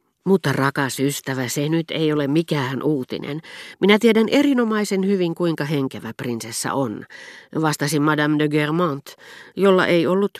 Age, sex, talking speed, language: 40-59, female, 140 wpm, Finnish